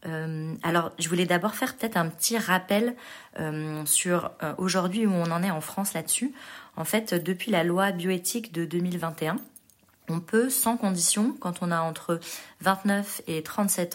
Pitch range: 155-195 Hz